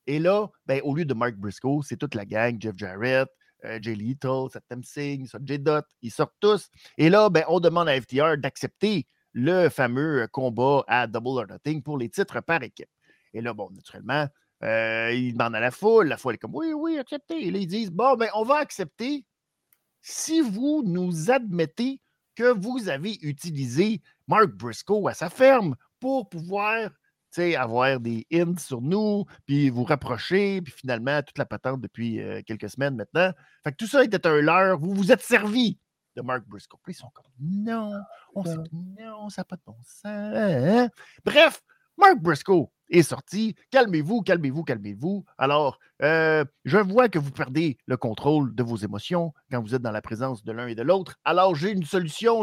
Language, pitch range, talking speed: French, 130-205 Hz, 195 wpm